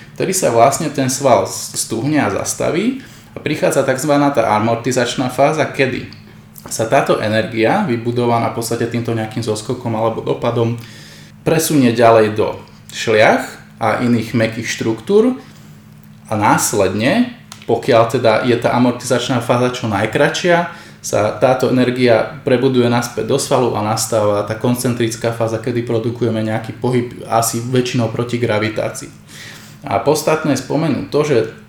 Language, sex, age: Slovak, male, 20-39